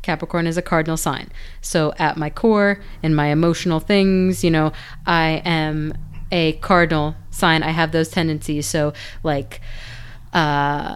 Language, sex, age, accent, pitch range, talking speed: English, female, 30-49, American, 155-185 Hz, 150 wpm